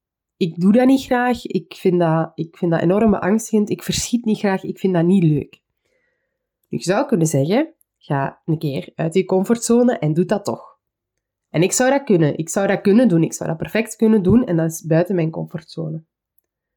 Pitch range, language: 165-225 Hz, Dutch